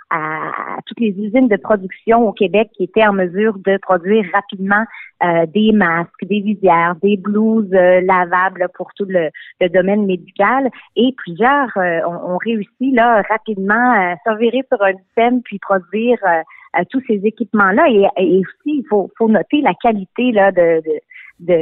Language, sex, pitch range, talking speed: French, female, 185-235 Hz, 170 wpm